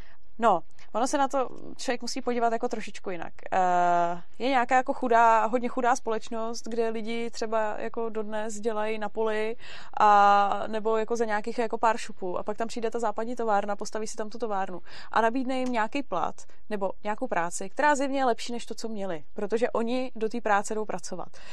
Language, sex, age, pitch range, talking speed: Czech, female, 20-39, 205-235 Hz, 190 wpm